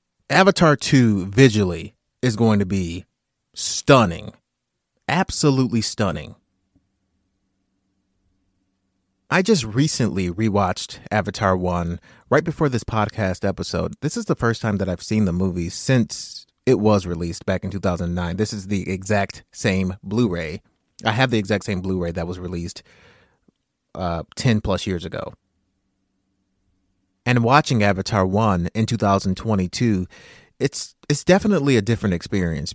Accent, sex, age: American, male, 30-49